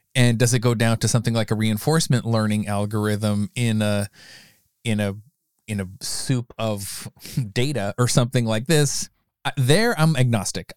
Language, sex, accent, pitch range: English, male, American, 105-135 Hz